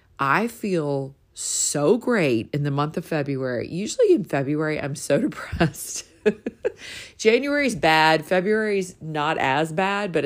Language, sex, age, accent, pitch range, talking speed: English, female, 40-59, American, 135-170 Hz, 130 wpm